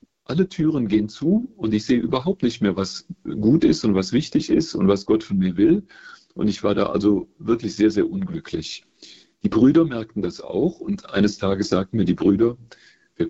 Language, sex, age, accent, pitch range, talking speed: German, male, 40-59, German, 95-150 Hz, 205 wpm